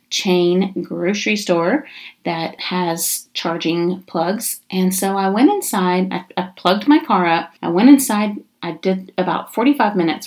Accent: American